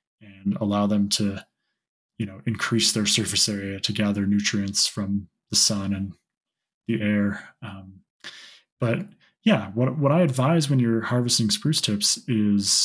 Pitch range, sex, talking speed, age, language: 105-120 Hz, male, 150 wpm, 20-39, English